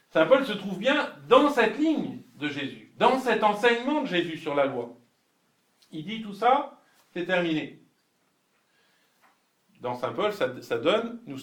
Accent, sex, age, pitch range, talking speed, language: French, male, 50-69, 135-210 Hz, 165 wpm, French